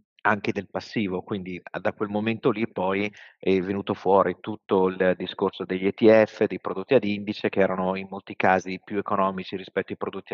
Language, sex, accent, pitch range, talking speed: Italian, male, native, 95-110 Hz, 180 wpm